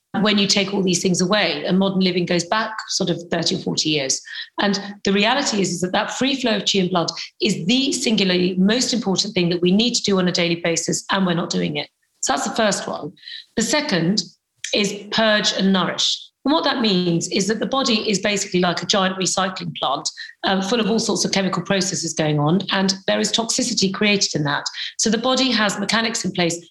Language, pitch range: English, 185-220 Hz